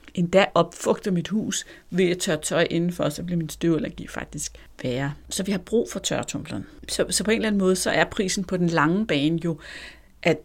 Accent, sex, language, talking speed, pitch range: native, female, Danish, 215 wpm, 165-230 Hz